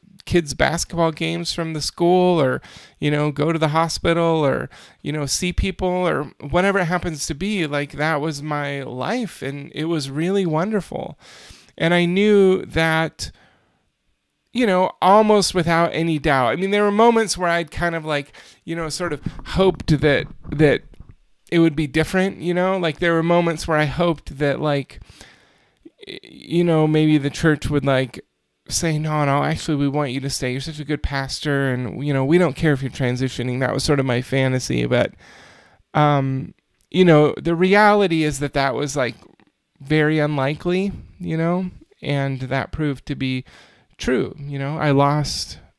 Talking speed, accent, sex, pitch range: 180 wpm, American, male, 140-175 Hz